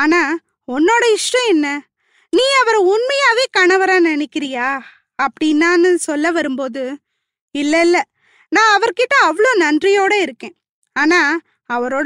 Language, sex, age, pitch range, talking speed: Tamil, female, 20-39, 300-395 Hz, 95 wpm